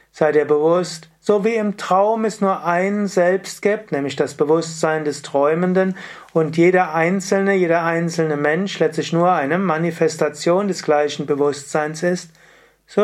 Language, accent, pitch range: German, German, 155-190 Hz